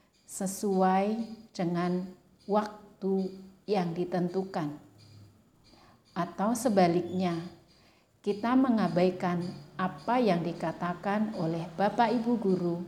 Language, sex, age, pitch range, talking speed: Indonesian, female, 50-69, 175-215 Hz, 75 wpm